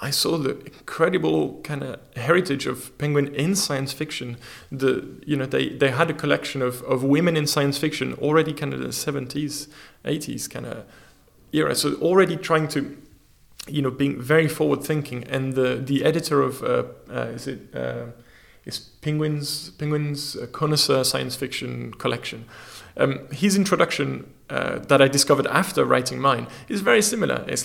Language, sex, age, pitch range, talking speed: English, male, 20-39, 125-150 Hz, 165 wpm